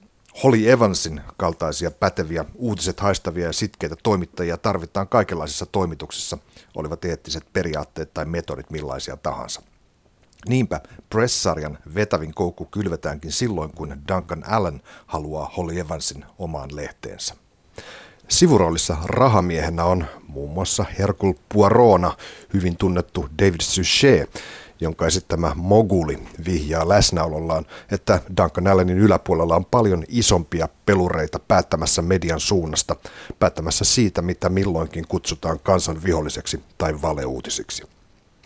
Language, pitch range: Finnish, 80-100 Hz